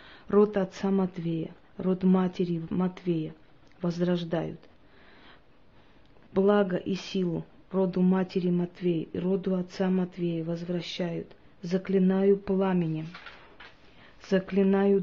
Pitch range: 180-195 Hz